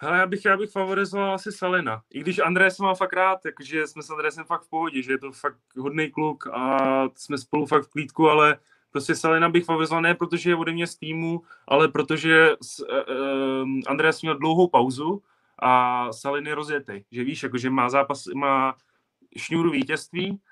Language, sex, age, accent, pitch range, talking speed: Czech, male, 20-39, native, 140-165 Hz, 195 wpm